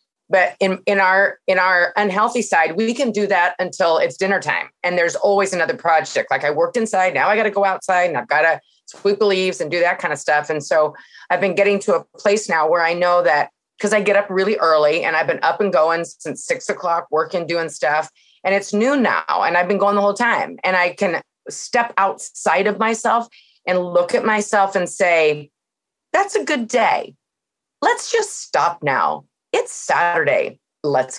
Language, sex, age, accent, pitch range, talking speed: English, female, 30-49, American, 170-220 Hz, 210 wpm